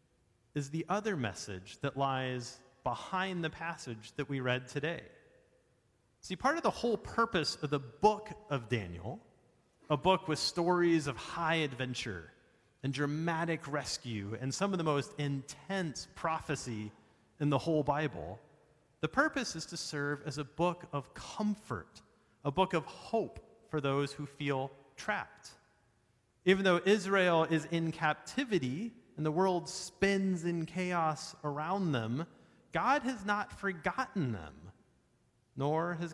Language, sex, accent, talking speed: English, male, American, 140 wpm